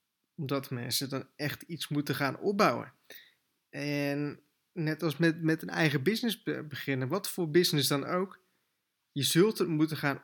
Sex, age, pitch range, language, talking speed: male, 20-39, 135-165 Hz, Dutch, 160 wpm